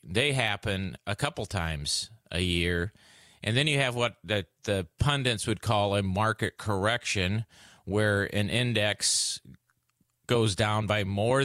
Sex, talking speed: male, 140 wpm